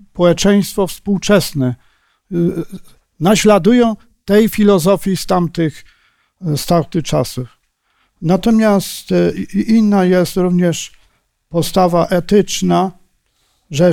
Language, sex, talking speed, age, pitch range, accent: Polish, male, 65 wpm, 50-69, 150-190 Hz, native